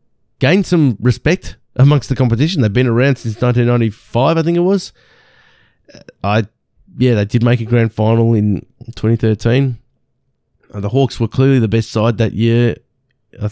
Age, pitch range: 20-39, 105-130 Hz